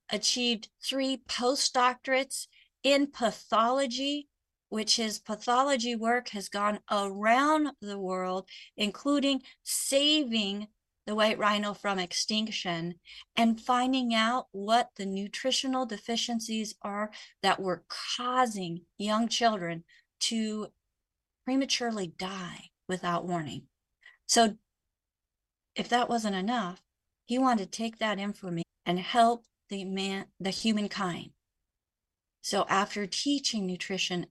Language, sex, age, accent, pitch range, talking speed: English, female, 40-59, American, 185-240 Hz, 105 wpm